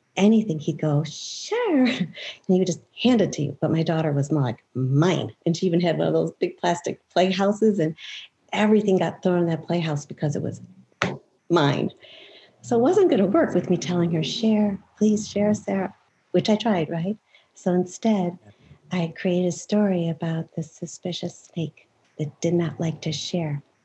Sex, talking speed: female, 180 wpm